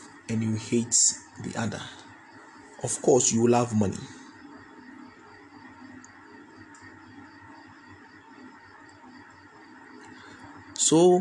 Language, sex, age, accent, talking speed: English, male, 30-49, Nigerian, 65 wpm